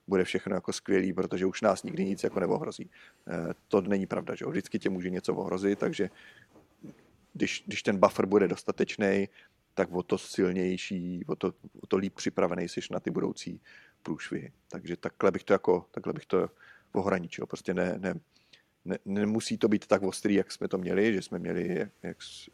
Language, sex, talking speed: Czech, male, 185 wpm